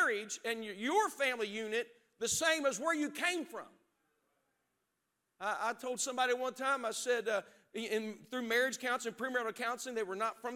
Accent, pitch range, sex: American, 225-300 Hz, male